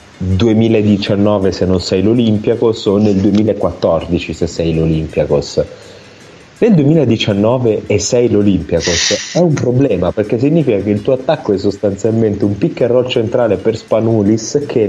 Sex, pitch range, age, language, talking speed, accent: male, 95-115 Hz, 30-49, Italian, 140 wpm, native